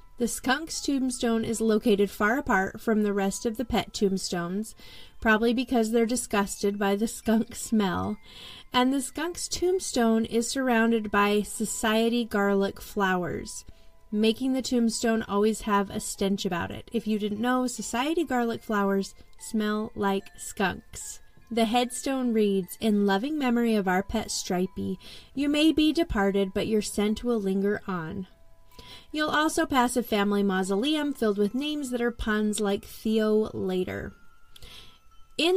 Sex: female